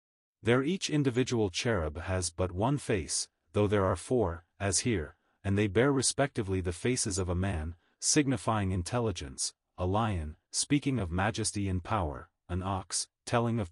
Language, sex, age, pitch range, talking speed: English, male, 40-59, 90-120 Hz, 155 wpm